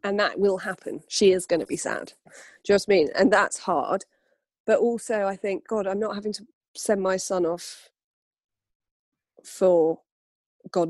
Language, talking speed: English, 180 wpm